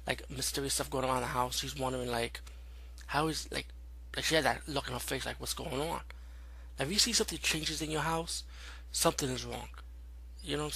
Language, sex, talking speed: English, male, 225 wpm